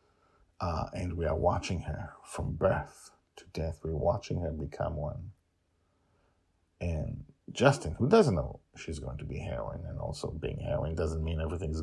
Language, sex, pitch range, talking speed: English, male, 80-115 Hz, 160 wpm